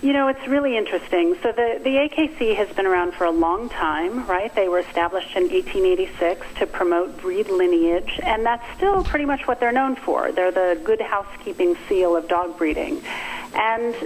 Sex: female